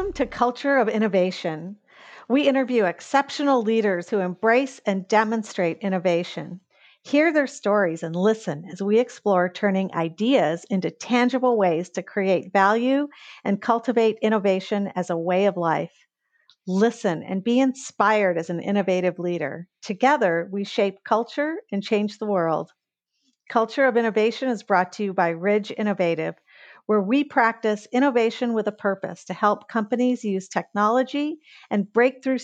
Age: 50-69